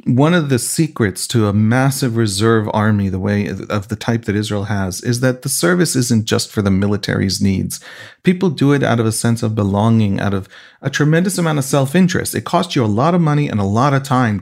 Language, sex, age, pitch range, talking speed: English, male, 40-59, 110-135 Hz, 230 wpm